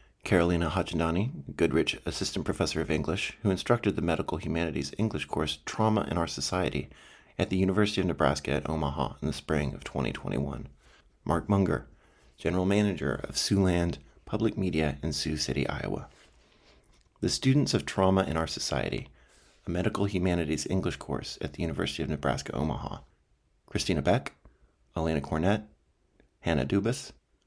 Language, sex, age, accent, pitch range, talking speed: English, male, 40-59, American, 70-95 Hz, 145 wpm